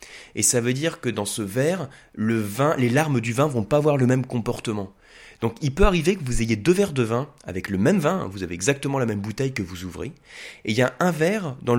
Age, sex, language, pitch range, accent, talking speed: 20-39, male, French, 105-140 Hz, French, 260 wpm